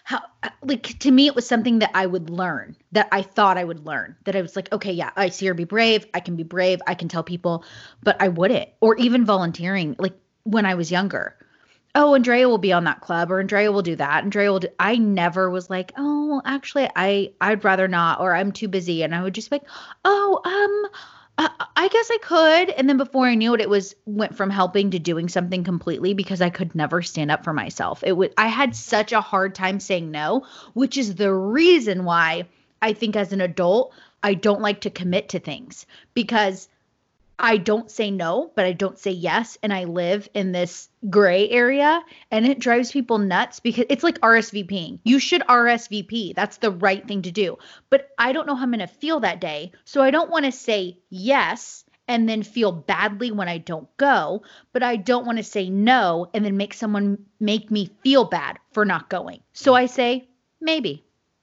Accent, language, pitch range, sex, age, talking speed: American, English, 185-245 Hz, female, 20-39, 215 wpm